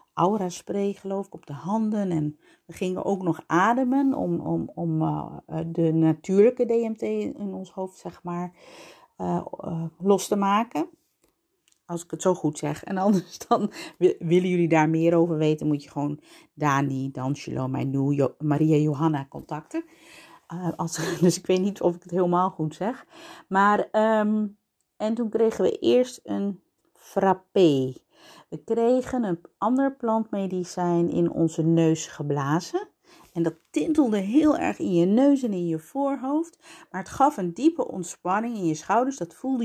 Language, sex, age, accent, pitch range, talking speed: Dutch, female, 50-69, Dutch, 165-230 Hz, 165 wpm